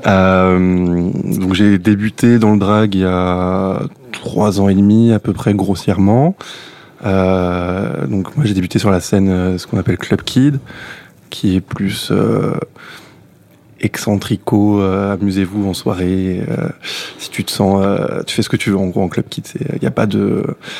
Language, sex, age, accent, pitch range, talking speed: French, male, 20-39, French, 95-115 Hz, 180 wpm